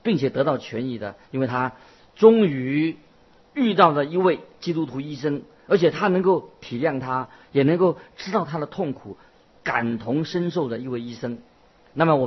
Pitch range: 125-175 Hz